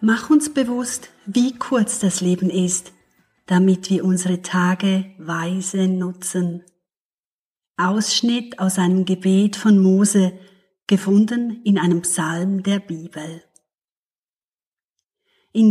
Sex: female